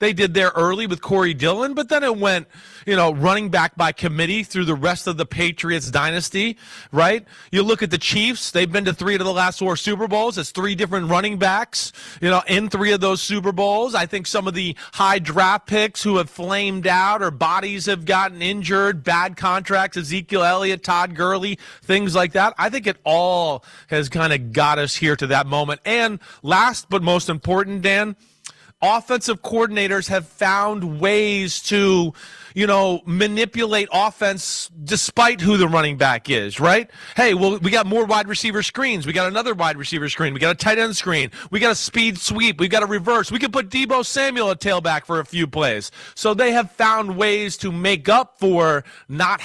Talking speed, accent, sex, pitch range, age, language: 200 wpm, American, male, 165-205 Hz, 30-49, English